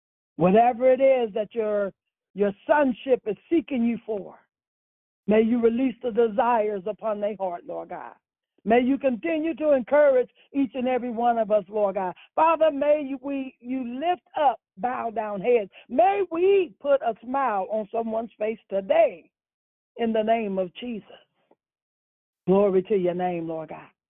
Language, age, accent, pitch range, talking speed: English, 60-79, American, 190-255 Hz, 155 wpm